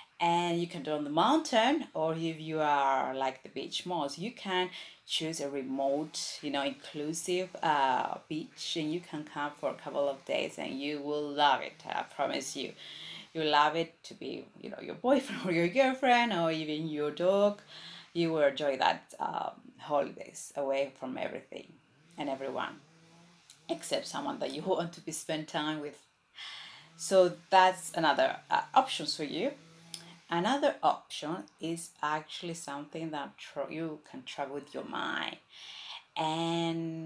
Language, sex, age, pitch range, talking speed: English, female, 30-49, 150-175 Hz, 160 wpm